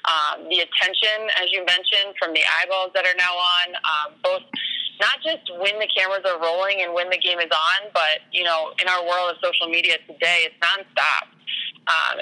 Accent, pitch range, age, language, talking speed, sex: American, 165-195 Hz, 20-39, English, 200 wpm, female